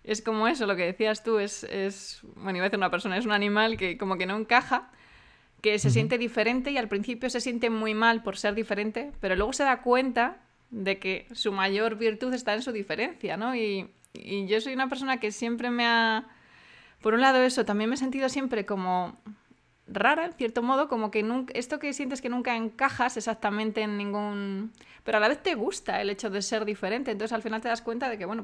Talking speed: 225 wpm